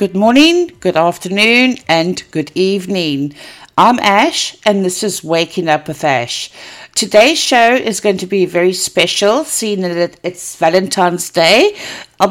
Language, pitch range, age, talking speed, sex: English, 175-230 Hz, 60-79, 145 wpm, female